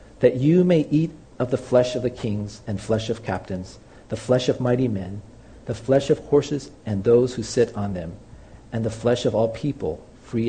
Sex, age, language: male, 40-59, English